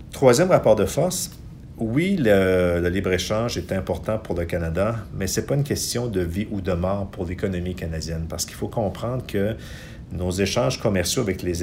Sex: male